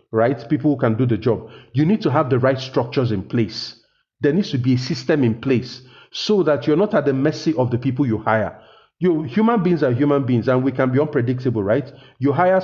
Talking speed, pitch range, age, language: 235 wpm, 120-155 Hz, 40-59, English